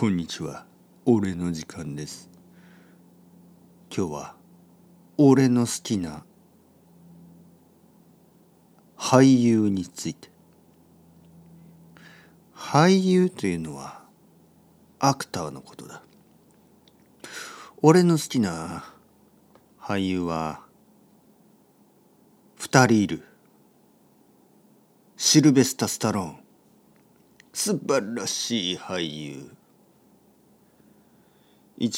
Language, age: Japanese, 50-69